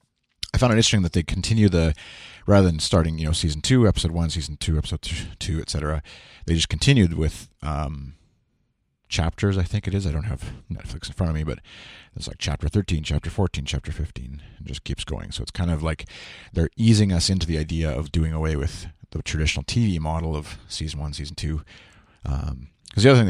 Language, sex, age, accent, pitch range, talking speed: English, male, 30-49, American, 75-95 Hz, 215 wpm